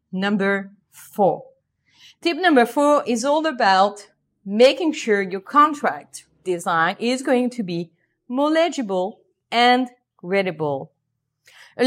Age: 30-49